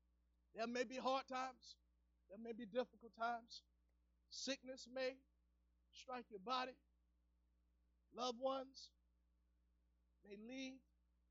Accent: American